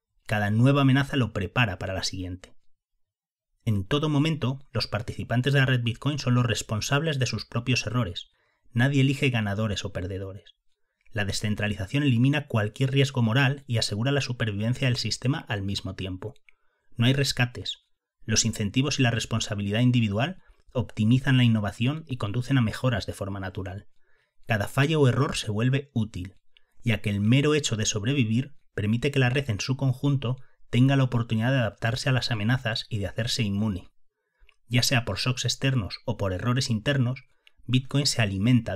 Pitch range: 105-135 Hz